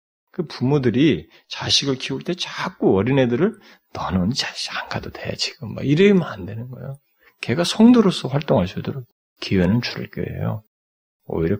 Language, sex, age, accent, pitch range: Korean, male, 40-59, native, 95-145 Hz